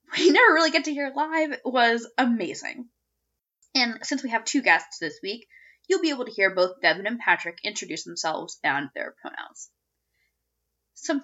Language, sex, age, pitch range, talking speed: English, female, 10-29, 170-270 Hz, 170 wpm